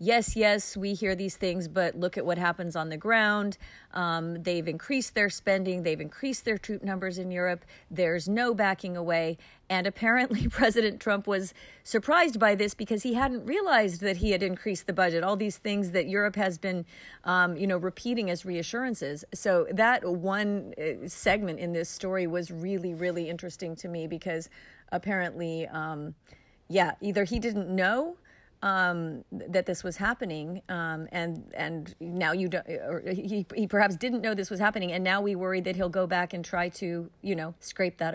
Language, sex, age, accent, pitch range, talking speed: English, female, 40-59, American, 175-205 Hz, 185 wpm